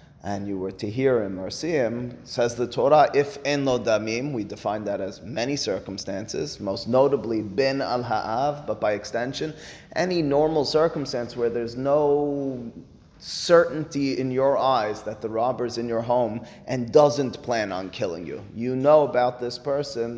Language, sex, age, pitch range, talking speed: English, male, 30-49, 115-145 Hz, 165 wpm